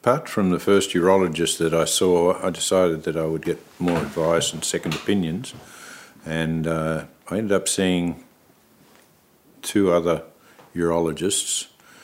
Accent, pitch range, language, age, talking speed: Australian, 80-85 Hz, English, 50-69, 140 wpm